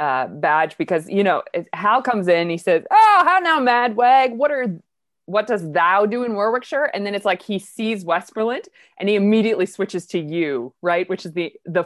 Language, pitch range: English, 155-205 Hz